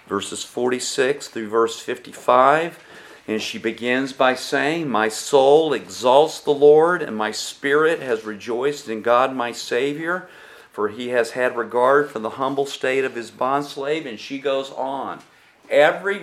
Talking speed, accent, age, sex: 150 wpm, American, 50-69, male